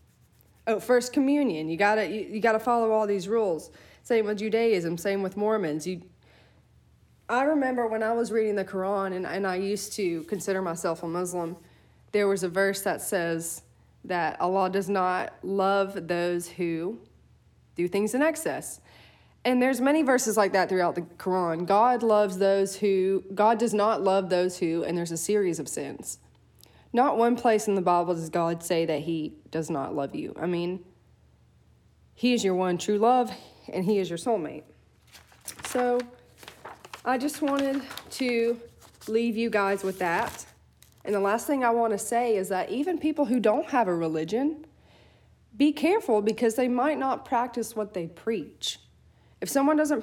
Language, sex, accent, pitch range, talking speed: English, female, American, 180-235 Hz, 175 wpm